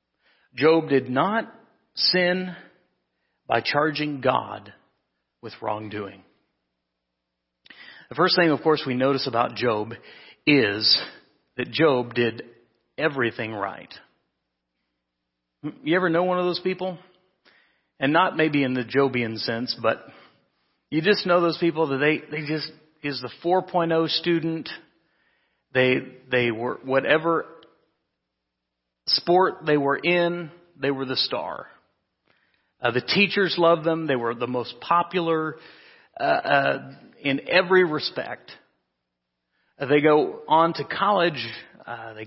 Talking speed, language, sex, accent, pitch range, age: 125 wpm, English, male, American, 115-165 Hz, 40-59